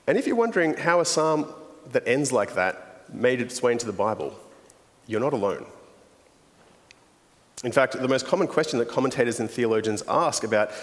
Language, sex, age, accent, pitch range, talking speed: English, male, 30-49, Australian, 110-150 Hz, 175 wpm